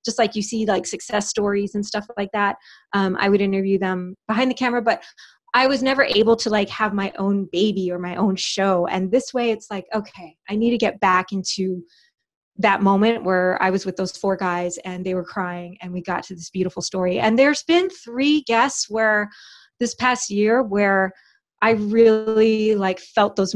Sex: female